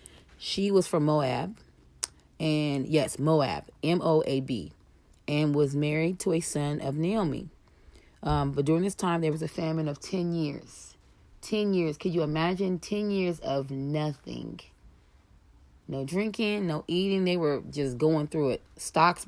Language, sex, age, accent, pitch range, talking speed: English, female, 30-49, American, 125-175 Hz, 150 wpm